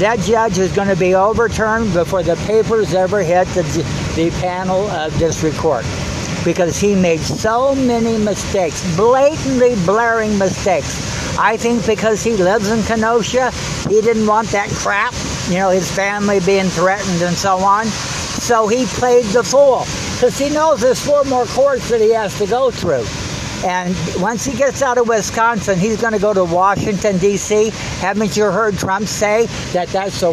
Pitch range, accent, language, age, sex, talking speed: 185-230 Hz, American, English, 60-79, male, 175 wpm